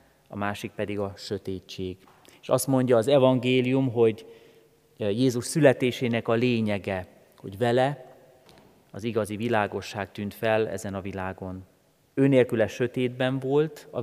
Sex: male